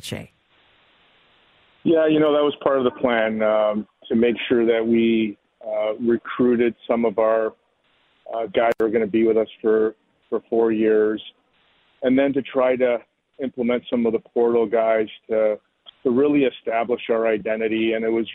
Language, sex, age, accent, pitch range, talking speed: English, male, 40-59, American, 110-120 Hz, 175 wpm